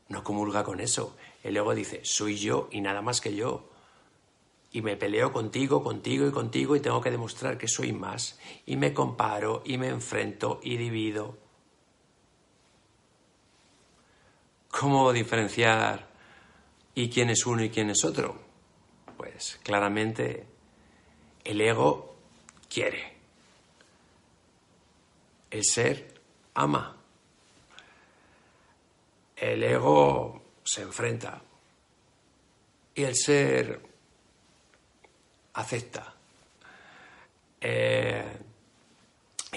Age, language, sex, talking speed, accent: 60-79, Spanish, male, 95 wpm, Spanish